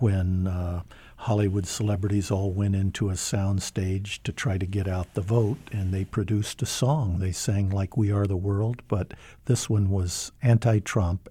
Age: 60-79